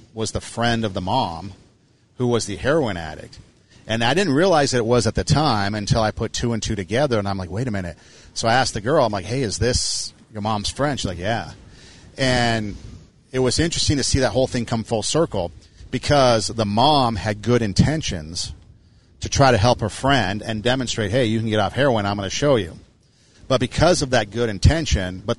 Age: 40-59